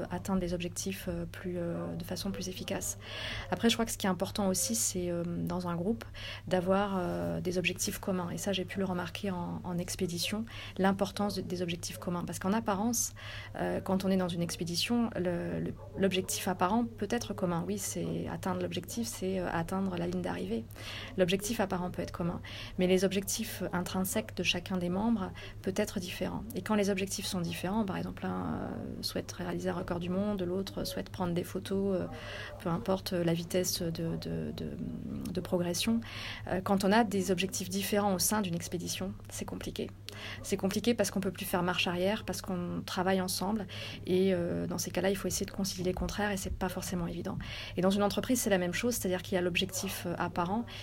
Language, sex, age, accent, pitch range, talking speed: French, female, 30-49, French, 170-195 Hz, 195 wpm